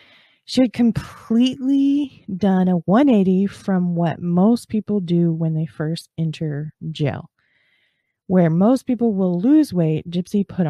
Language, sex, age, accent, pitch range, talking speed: English, female, 20-39, American, 160-195 Hz, 135 wpm